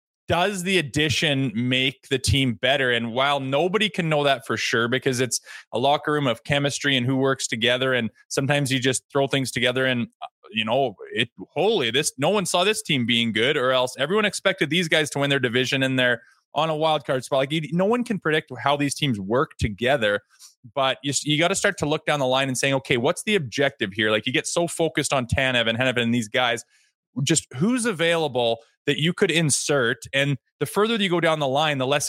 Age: 20-39